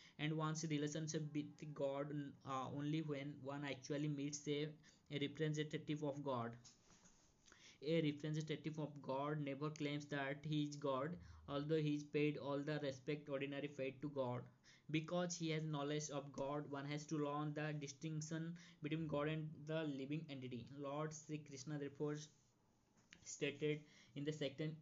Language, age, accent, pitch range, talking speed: Hindi, 20-39, native, 140-155 Hz, 150 wpm